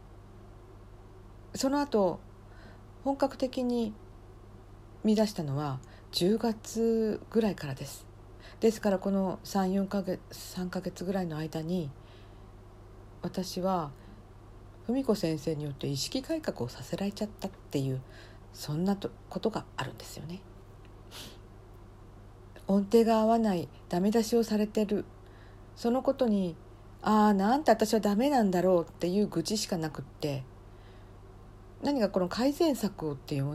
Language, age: Japanese, 50-69